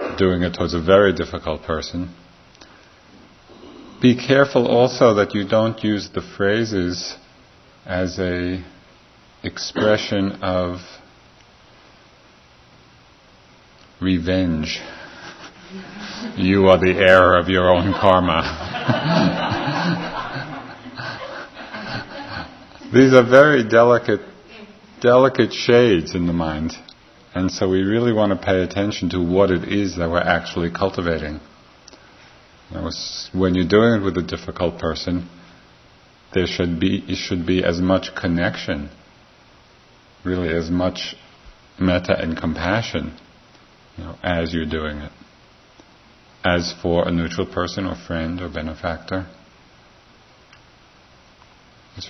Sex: male